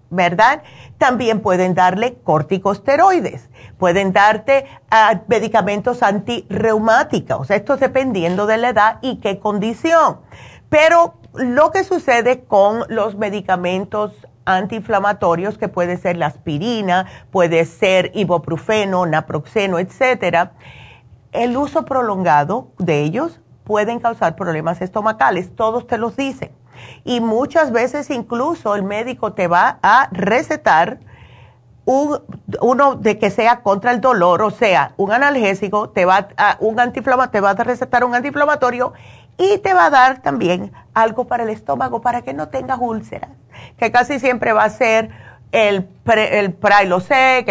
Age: 40-59